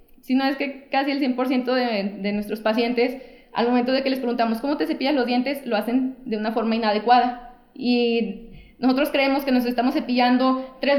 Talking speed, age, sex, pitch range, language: 190 wpm, 20-39, female, 220-265 Hz, Spanish